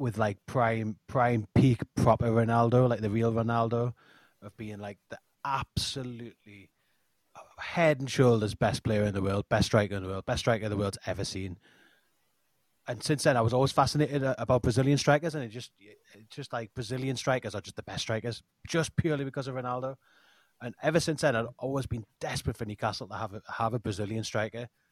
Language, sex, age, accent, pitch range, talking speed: English, male, 30-49, British, 110-140 Hz, 195 wpm